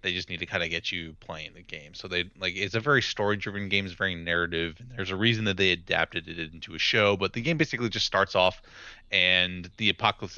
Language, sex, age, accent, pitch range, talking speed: English, male, 20-39, American, 90-110 Hz, 250 wpm